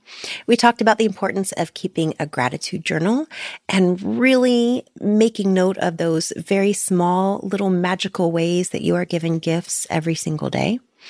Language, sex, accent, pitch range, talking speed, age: English, female, American, 165-215 Hz, 155 wpm, 30-49